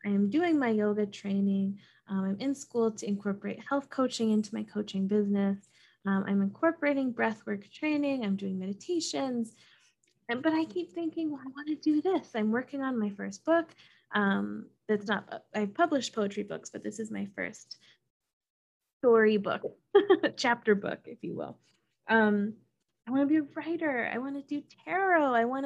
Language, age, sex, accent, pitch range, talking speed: English, 20-39, female, American, 210-295 Hz, 175 wpm